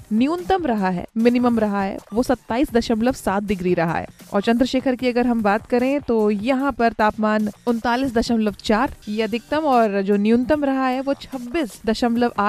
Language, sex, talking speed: Hindi, female, 155 wpm